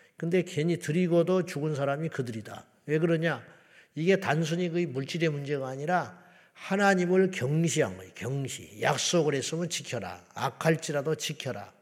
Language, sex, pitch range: Korean, male, 125-170 Hz